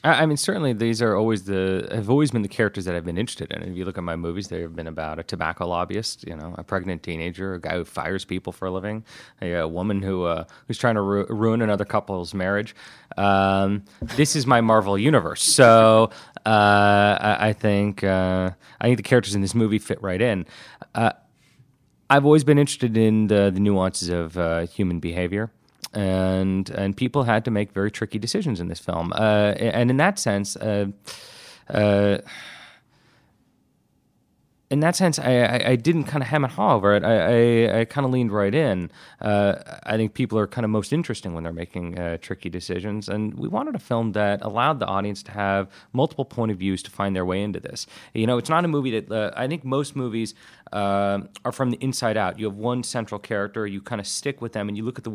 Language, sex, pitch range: English, male, 95-120 Hz